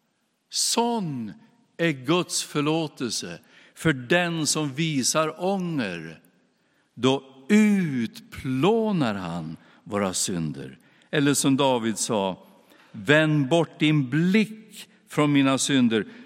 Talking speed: 90 wpm